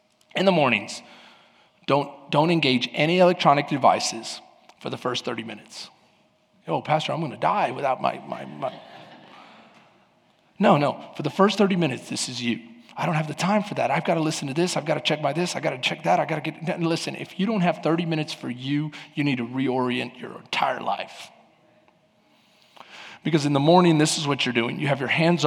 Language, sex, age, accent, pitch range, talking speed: English, male, 30-49, American, 140-175 Hz, 215 wpm